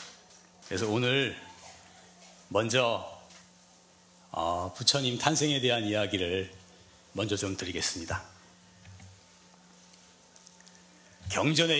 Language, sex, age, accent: Korean, male, 40-59, native